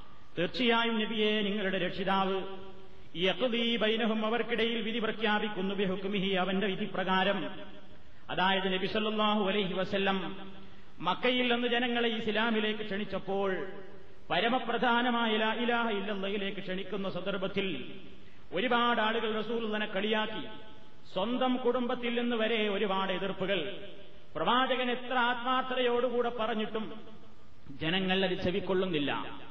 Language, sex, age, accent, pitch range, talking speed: Malayalam, male, 30-49, native, 190-225 Hz, 95 wpm